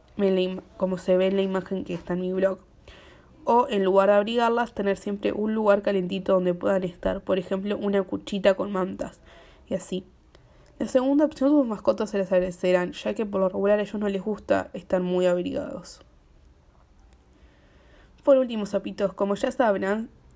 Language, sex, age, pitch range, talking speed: Spanish, female, 20-39, 185-215 Hz, 175 wpm